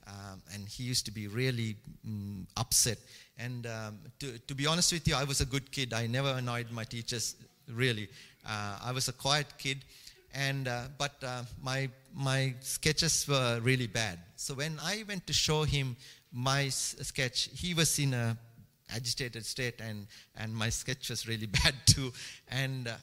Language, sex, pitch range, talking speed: English, male, 120-155 Hz, 180 wpm